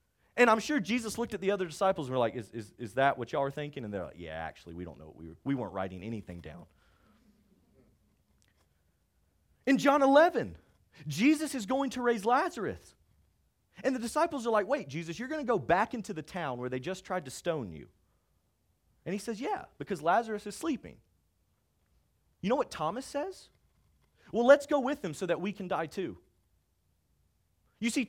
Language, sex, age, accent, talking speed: English, male, 30-49, American, 200 wpm